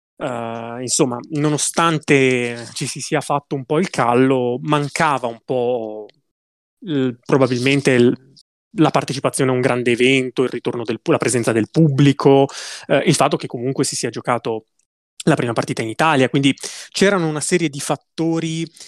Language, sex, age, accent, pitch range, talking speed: Italian, male, 20-39, native, 120-150 Hz, 155 wpm